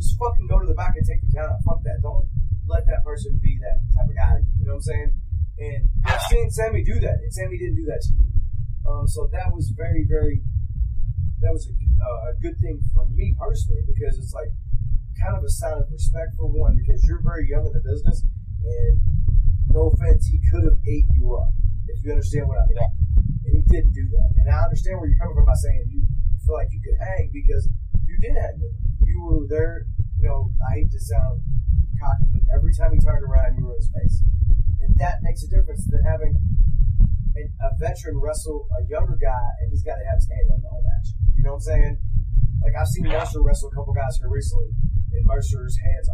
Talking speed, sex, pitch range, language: 225 wpm, male, 90-105 Hz, English